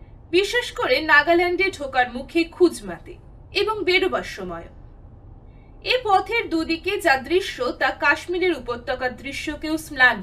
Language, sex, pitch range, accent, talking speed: Bengali, female, 260-385 Hz, native, 110 wpm